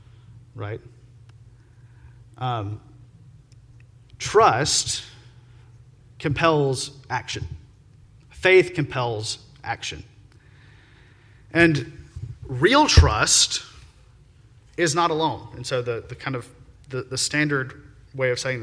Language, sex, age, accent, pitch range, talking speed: English, male, 30-49, American, 120-145 Hz, 85 wpm